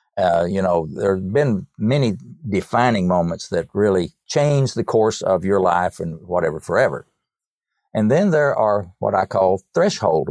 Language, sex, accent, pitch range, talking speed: English, male, American, 95-115 Hz, 165 wpm